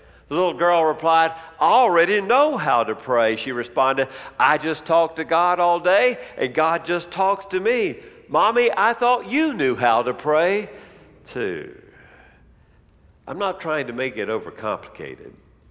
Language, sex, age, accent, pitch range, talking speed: English, male, 50-69, American, 135-180 Hz, 160 wpm